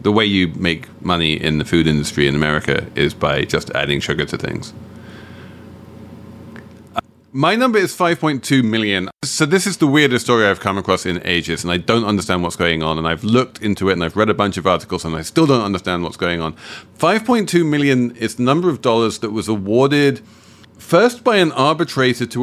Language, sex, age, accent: English, male, 40-59, British